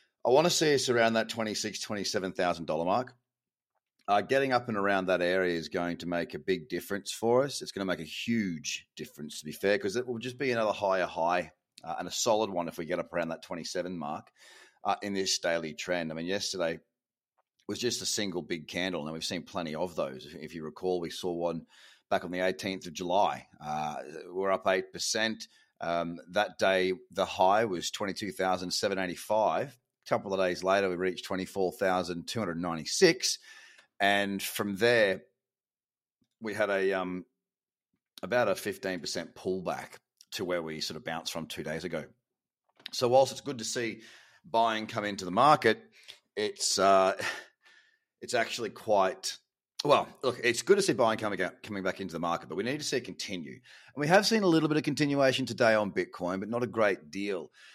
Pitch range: 90-115 Hz